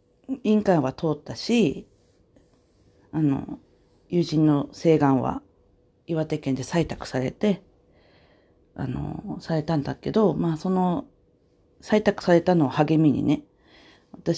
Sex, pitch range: female, 135-170 Hz